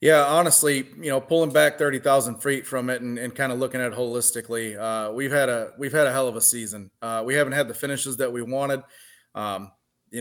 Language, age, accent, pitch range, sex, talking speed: English, 20-39, American, 115-130 Hz, male, 240 wpm